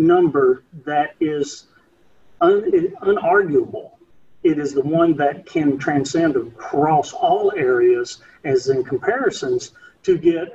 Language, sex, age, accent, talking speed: English, male, 40-59, American, 110 wpm